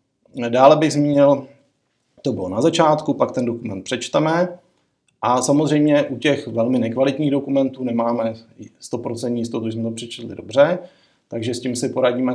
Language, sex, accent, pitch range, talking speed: Czech, male, native, 110-125 Hz, 150 wpm